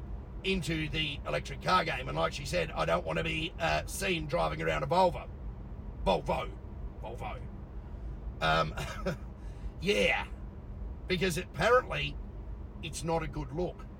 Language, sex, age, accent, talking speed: English, male, 40-59, Australian, 135 wpm